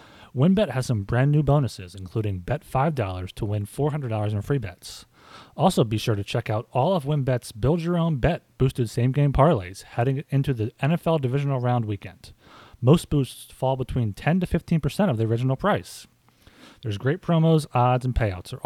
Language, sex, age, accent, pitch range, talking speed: English, male, 30-49, American, 110-145 Hz, 180 wpm